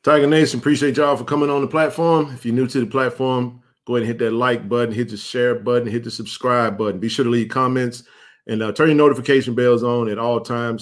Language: English